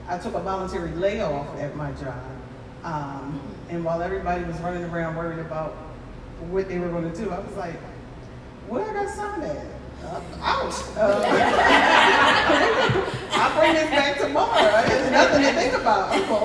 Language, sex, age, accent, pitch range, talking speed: English, female, 30-49, American, 155-195 Hz, 165 wpm